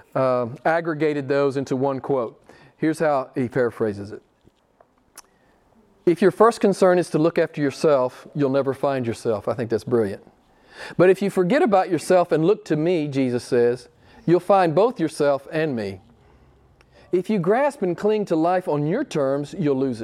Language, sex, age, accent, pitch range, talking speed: English, male, 40-59, American, 135-180 Hz, 175 wpm